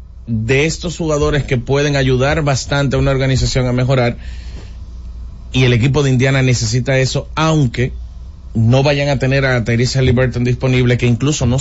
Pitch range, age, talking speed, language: 110-130 Hz, 30-49, 160 wpm, Spanish